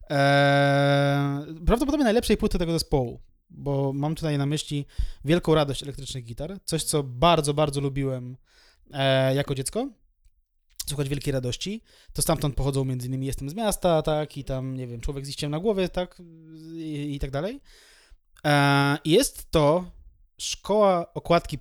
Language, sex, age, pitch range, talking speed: Polish, male, 20-39, 140-170 Hz, 150 wpm